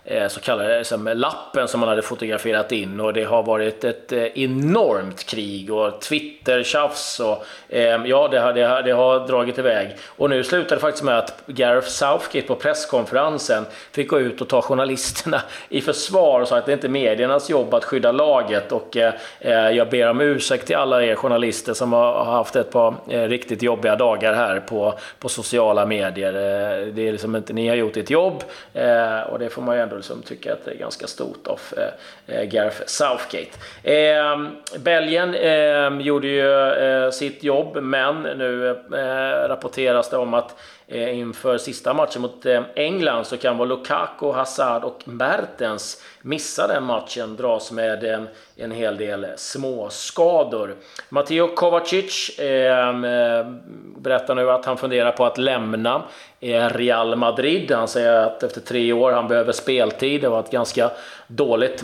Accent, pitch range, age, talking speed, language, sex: native, 115-135 Hz, 30-49, 175 wpm, Swedish, male